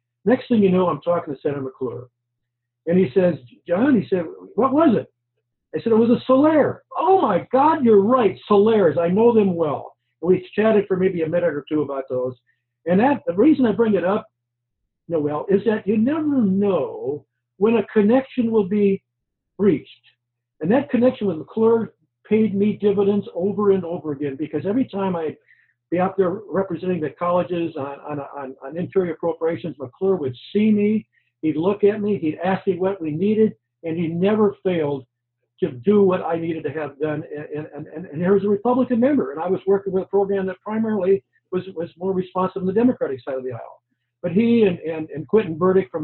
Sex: male